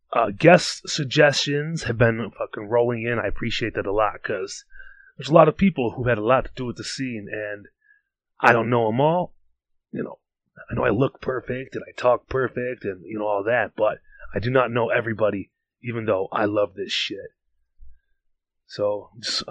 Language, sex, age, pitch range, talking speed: English, male, 30-49, 110-170 Hz, 195 wpm